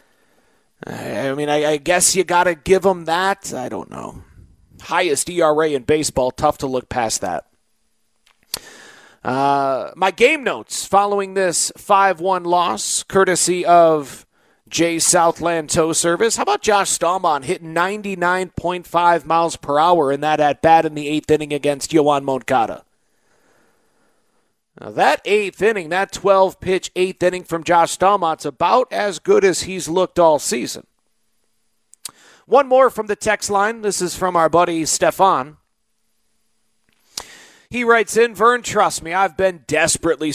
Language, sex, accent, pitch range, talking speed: English, male, American, 155-195 Hz, 140 wpm